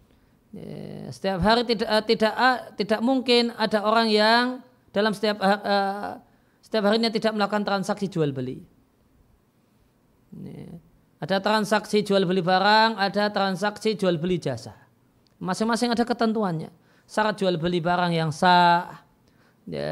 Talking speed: 115 wpm